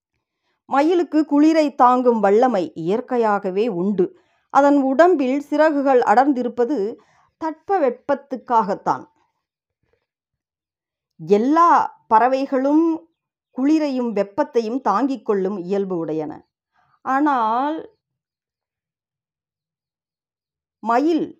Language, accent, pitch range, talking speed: Tamil, native, 195-275 Hz, 55 wpm